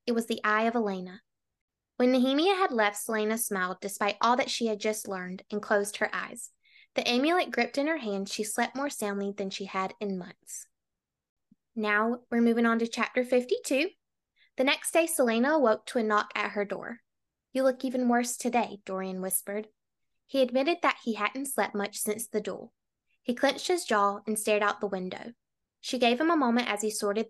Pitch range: 205-250 Hz